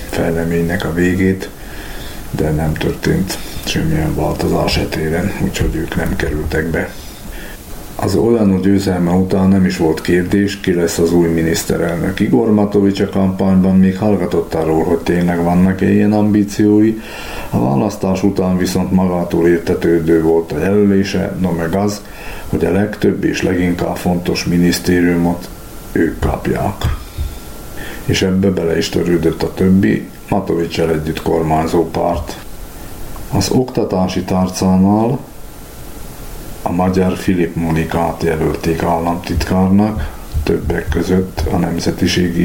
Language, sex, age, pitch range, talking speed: Hungarian, male, 50-69, 85-95 Hz, 115 wpm